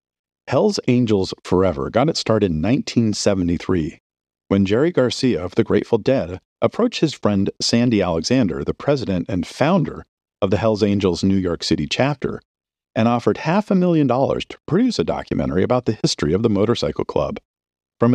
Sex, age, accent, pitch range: male, 50-69, American, 90-120 Hz